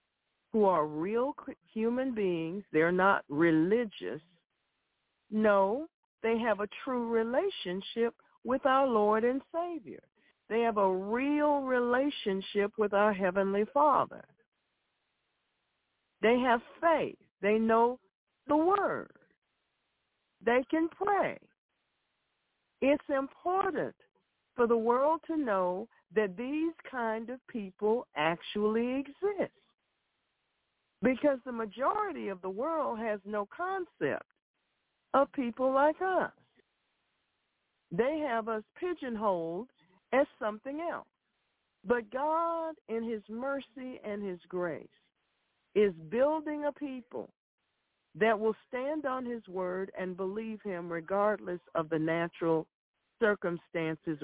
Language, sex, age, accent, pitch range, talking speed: English, female, 60-79, American, 195-270 Hz, 110 wpm